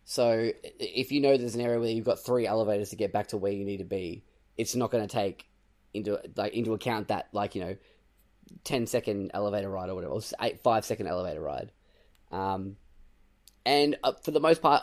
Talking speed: 215 wpm